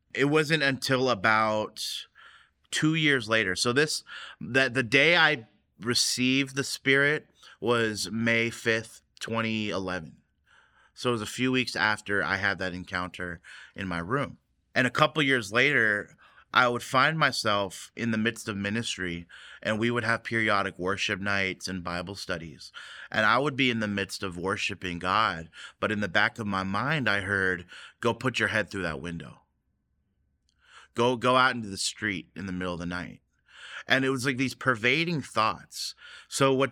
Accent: American